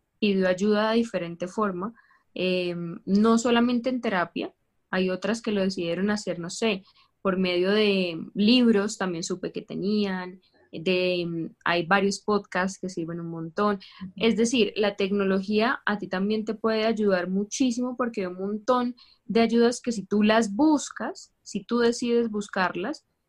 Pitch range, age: 190-230 Hz, 10-29